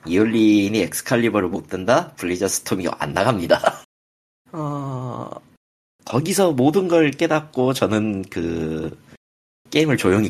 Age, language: 40-59, Korean